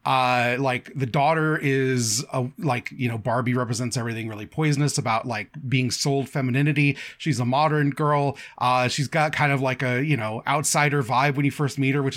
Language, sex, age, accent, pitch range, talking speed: English, male, 30-49, American, 125-155 Hz, 195 wpm